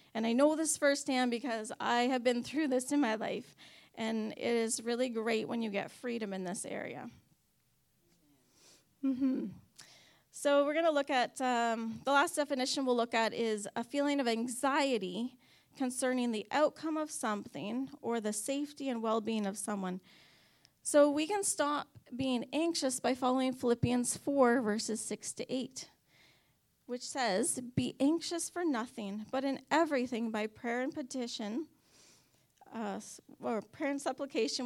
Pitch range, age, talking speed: 230-285 Hz, 30-49, 155 wpm